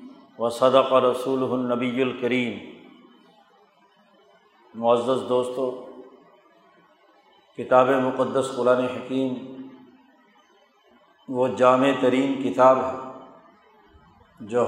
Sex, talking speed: male, 70 wpm